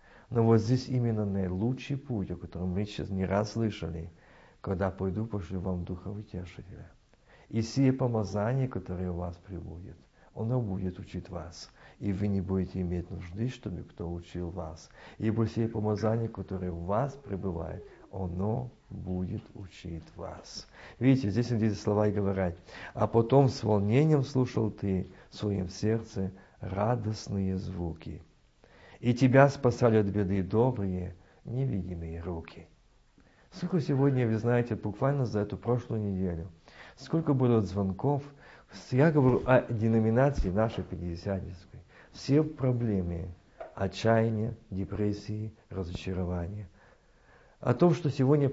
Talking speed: 125 wpm